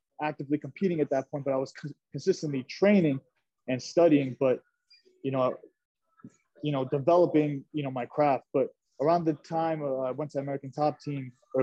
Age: 20-39